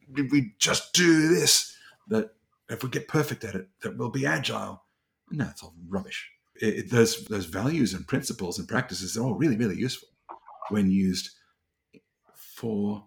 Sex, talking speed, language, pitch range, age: male, 170 wpm, English, 90-120 Hz, 50-69